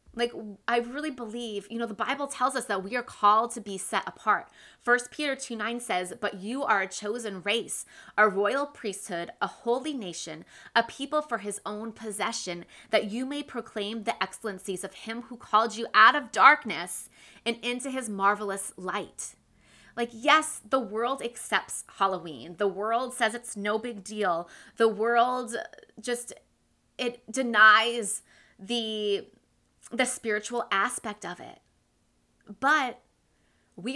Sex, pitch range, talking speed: female, 195-245 Hz, 150 wpm